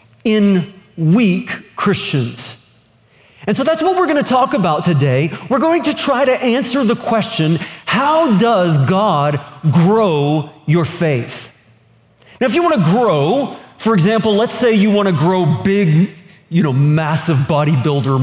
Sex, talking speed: male, 150 wpm